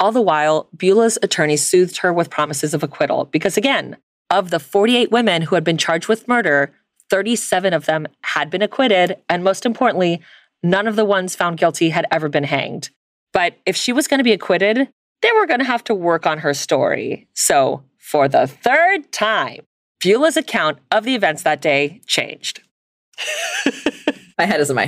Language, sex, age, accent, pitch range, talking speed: English, female, 30-49, American, 155-220 Hz, 190 wpm